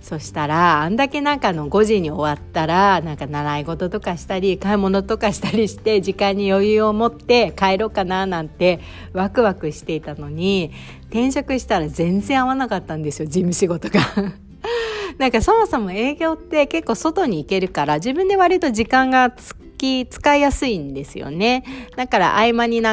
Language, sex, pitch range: Japanese, female, 160-245 Hz